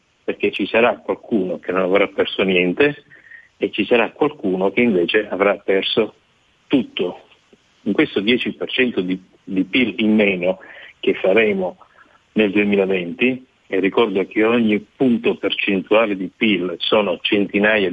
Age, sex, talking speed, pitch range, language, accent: 50-69, male, 135 wpm, 95-115 Hz, Italian, native